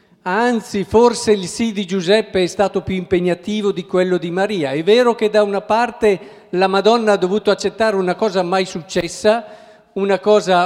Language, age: Italian, 50-69